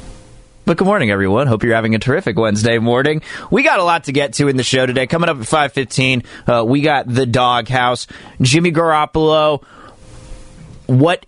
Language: English